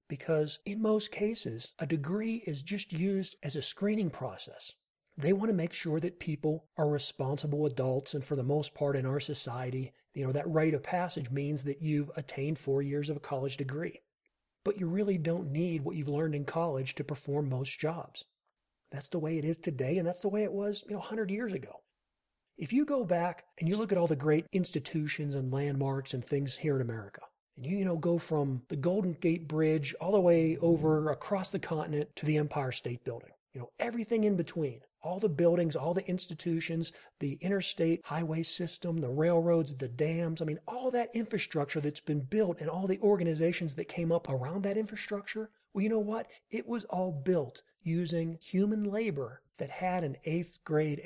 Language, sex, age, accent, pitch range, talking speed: English, male, 40-59, American, 145-190 Hz, 200 wpm